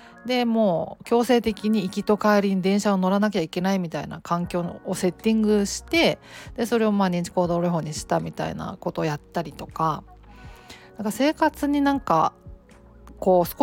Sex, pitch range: female, 175-220 Hz